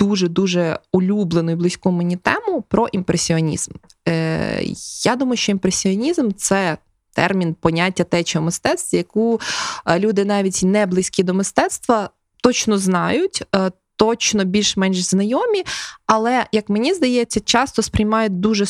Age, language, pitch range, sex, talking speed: 20-39, Ukrainian, 180-225 Hz, female, 120 wpm